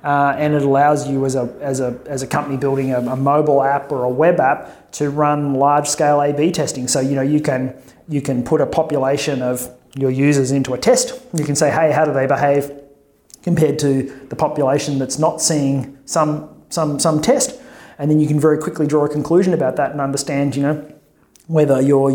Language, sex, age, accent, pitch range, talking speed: English, male, 30-49, Australian, 135-155 Hz, 215 wpm